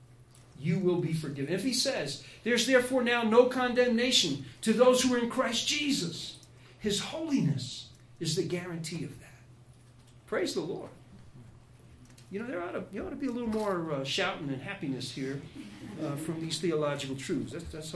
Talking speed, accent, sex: 175 wpm, American, male